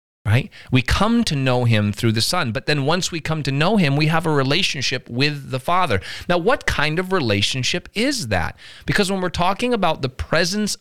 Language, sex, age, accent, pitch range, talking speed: English, male, 40-59, American, 105-155 Hz, 210 wpm